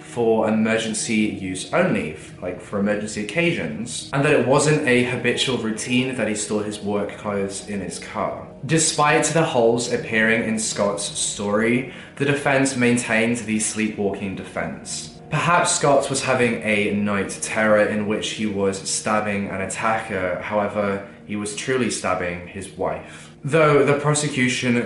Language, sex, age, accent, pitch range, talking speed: English, male, 10-29, British, 105-140 Hz, 145 wpm